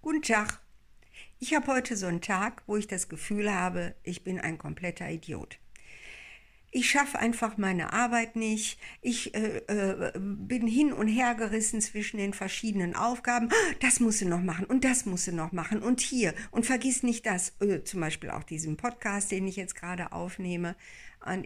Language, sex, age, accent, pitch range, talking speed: German, female, 60-79, German, 180-215 Hz, 180 wpm